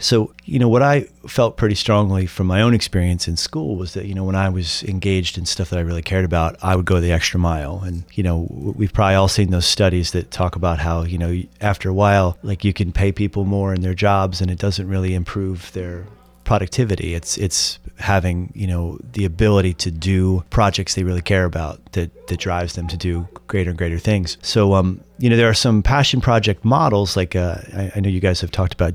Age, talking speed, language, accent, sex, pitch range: 30-49, 235 wpm, English, American, male, 85-100 Hz